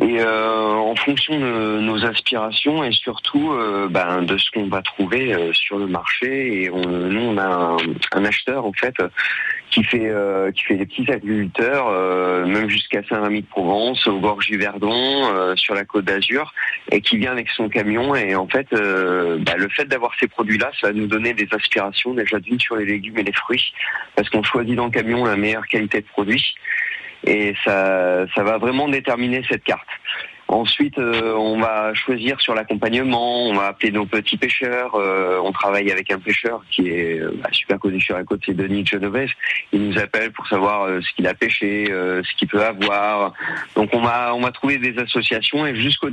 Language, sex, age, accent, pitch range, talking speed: French, male, 30-49, French, 95-115 Hz, 200 wpm